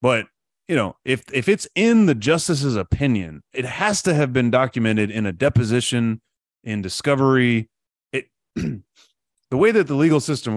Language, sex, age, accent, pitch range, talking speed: English, male, 30-49, American, 105-145 Hz, 160 wpm